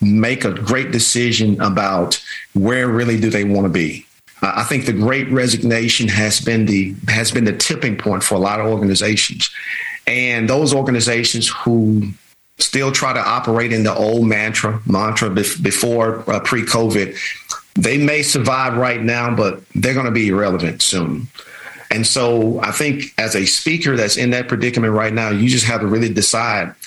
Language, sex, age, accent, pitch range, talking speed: English, male, 40-59, American, 105-125 Hz, 170 wpm